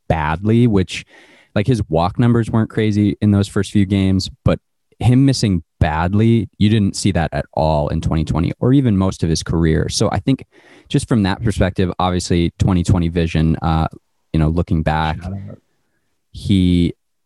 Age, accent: 20-39, American